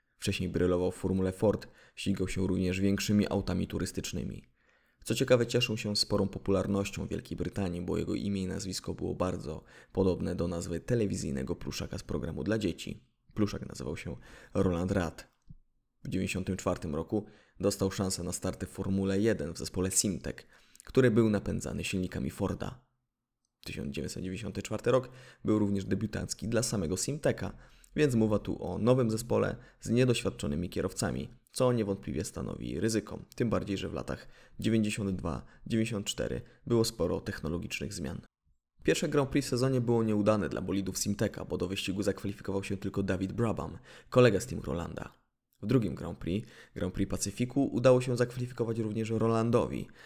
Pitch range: 95-115 Hz